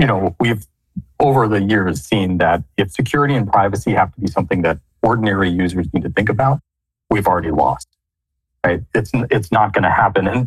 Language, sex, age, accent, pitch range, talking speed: English, male, 40-59, American, 80-115 Hz, 195 wpm